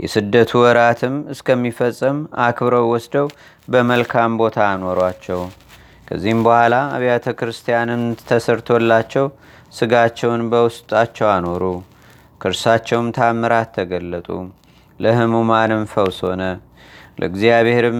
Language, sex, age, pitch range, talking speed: Amharic, male, 30-49, 115-125 Hz, 75 wpm